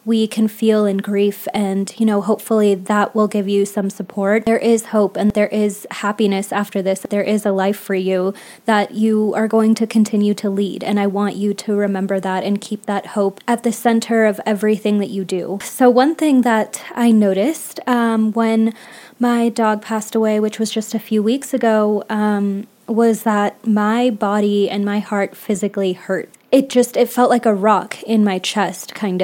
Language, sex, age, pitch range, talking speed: English, female, 20-39, 205-225 Hz, 200 wpm